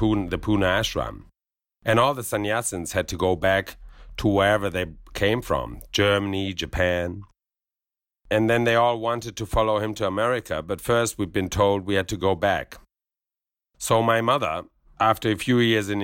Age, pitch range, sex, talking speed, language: 50-69, 95-115 Hz, male, 170 wpm, English